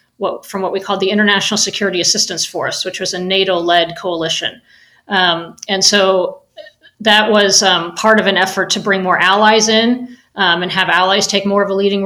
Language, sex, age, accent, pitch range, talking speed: English, female, 40-59, American, 170-200 Hz, 190 wpm